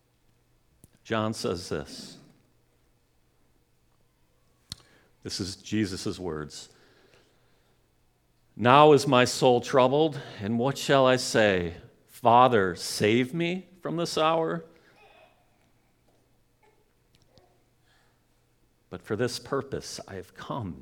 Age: 50-69